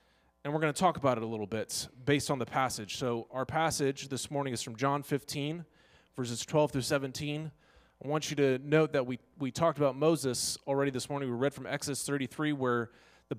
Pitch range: 105-140 Hz